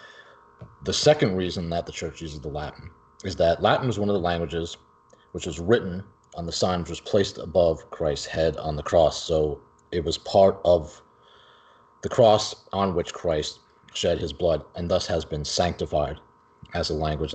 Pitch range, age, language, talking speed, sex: 80-100 Hz, 30-49, English, 185 wpm, male